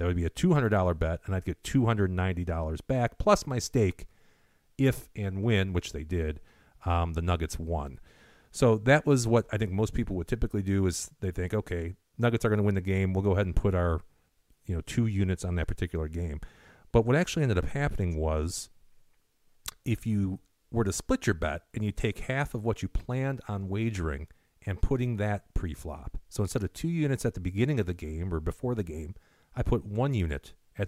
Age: 40-59